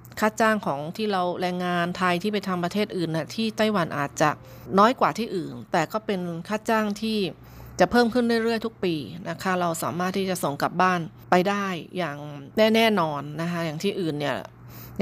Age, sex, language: 20-39, female, Thai